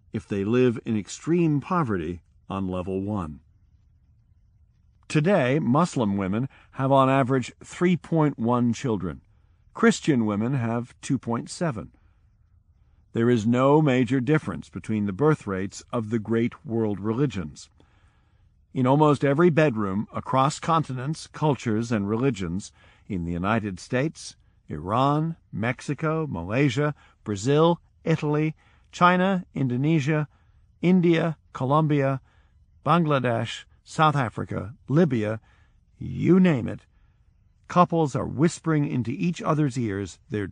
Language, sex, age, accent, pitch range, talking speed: English, male, 50-69, American, 95-145 Hz, 105 wpm